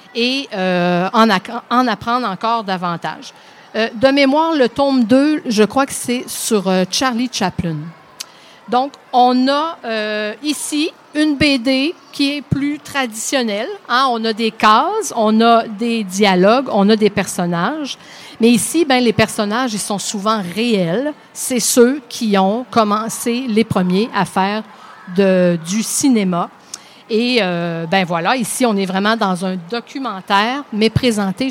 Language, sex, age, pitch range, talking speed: French, female, 50-69, 205-270 Hz, 150 wpm